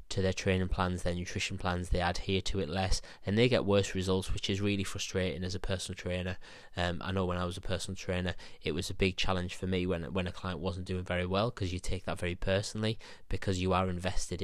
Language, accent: English, British